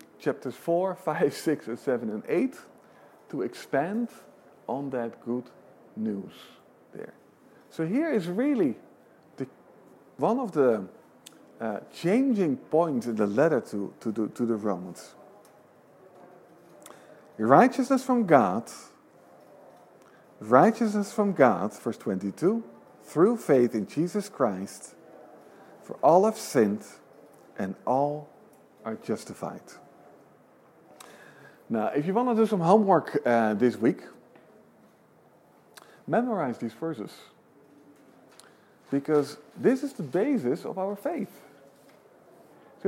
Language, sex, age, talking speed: English, male, 50-69, 105 wpm